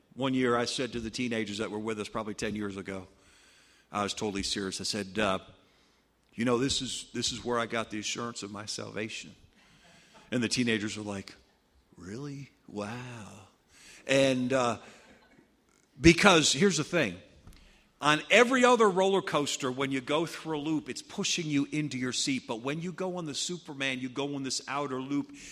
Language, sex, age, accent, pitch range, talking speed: English, male, 50-69, American, 120-175 Hz, 185 wpm